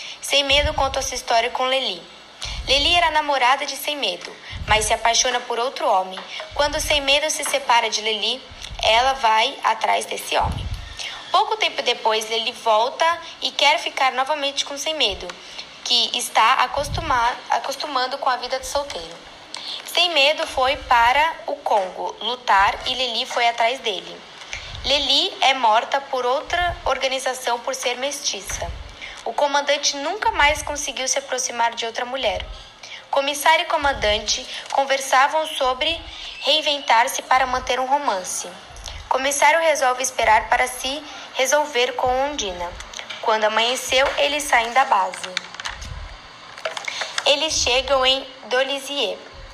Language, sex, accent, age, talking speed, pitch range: Portuguese, female, Brazilian, 10-29, 135 wpm, 240-290 Hz